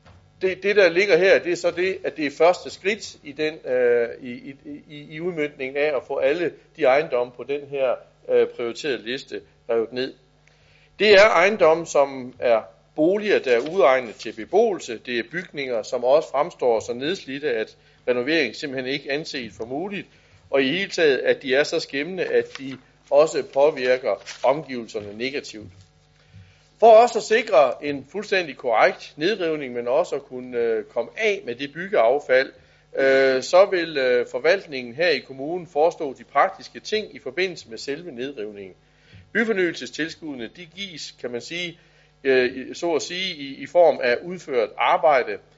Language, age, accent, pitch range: Danish, 60-79, native, 125-185 Hz